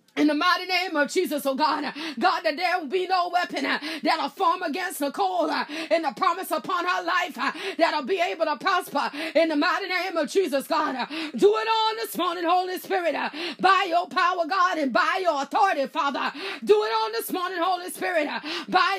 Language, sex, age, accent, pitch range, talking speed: English, female, 30-49, American, 315-365 Hz, 195 wpm